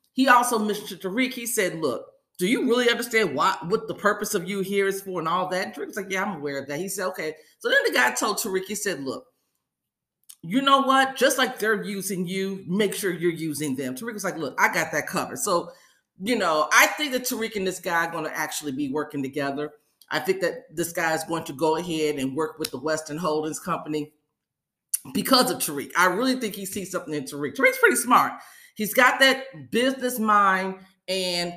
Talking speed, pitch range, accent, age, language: 230 wpm, 165-235 Hz, American, 40-59, English